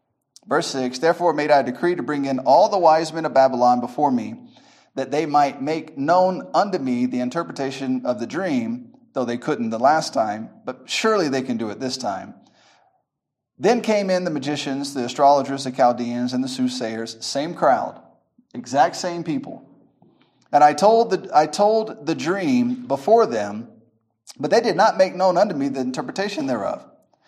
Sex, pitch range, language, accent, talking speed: male, 135-185 Hz, English, American, 175 wpm